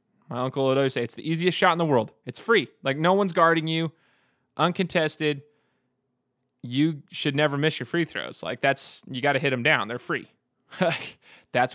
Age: 20-39